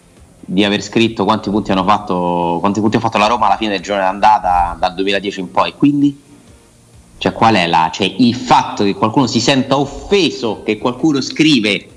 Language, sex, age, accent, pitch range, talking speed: Italian, male, 30-49, native, 95-120 Hz, 175 wpm